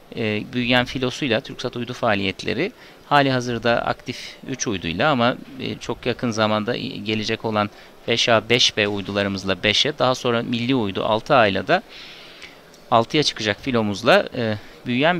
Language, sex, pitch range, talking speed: Turkish, male, 110-130 Hz, 120 wpm